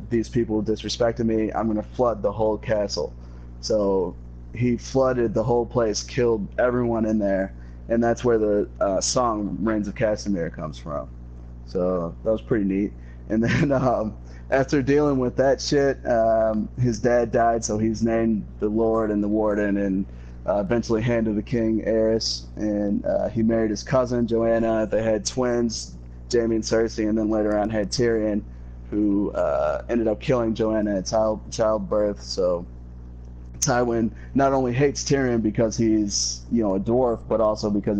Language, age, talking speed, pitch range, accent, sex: English, 30-49, 165 wpm, 95-115 Hz, American, male